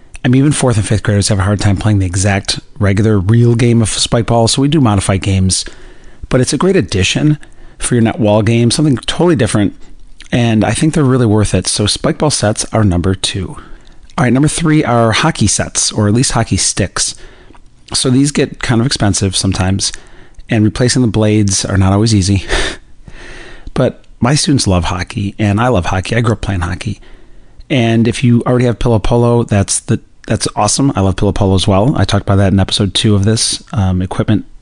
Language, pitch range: English, 100-120 Hz